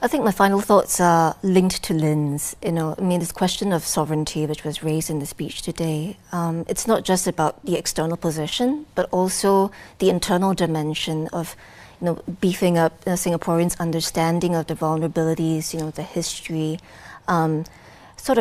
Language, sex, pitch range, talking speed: English, female, 165-195 Hz, 175 wpm